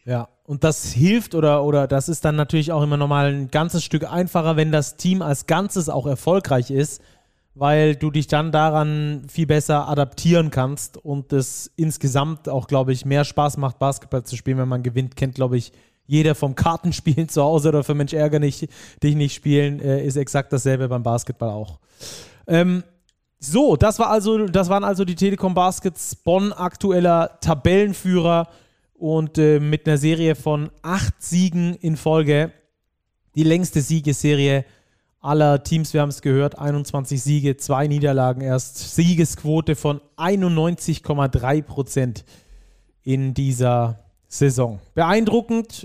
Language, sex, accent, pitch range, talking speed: German, male, German, 140-170 Hz, 155 wpm